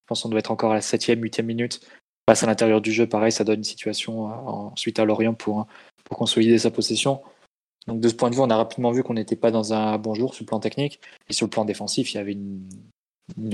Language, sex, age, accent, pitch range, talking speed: French, male, 20-39, French, 110-120 Hz, 260 wpm